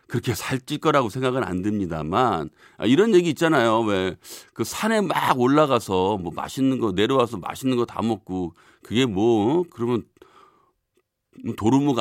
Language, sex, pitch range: Korean, male, 90-135 Hz